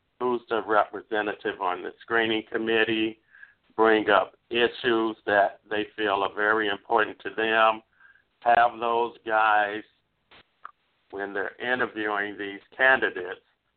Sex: male